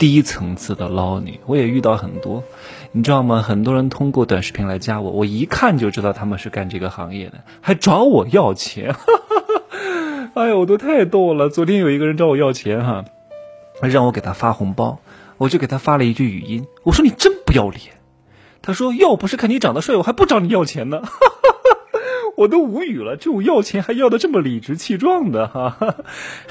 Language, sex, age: Chinese, male, 20-39